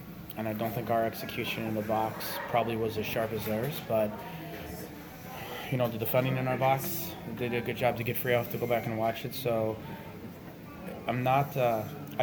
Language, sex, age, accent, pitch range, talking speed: English, male, 20-39, American, 110-125 Hz, 200 wpm